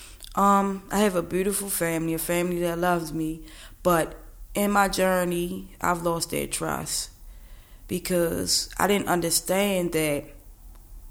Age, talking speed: 20-39, 130 wpm